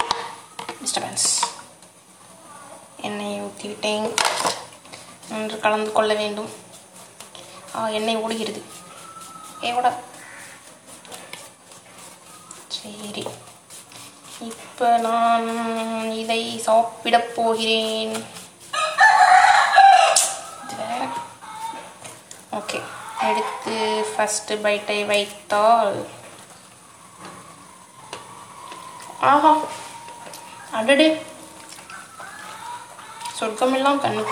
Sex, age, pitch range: female, 20-39, 220-305 Hz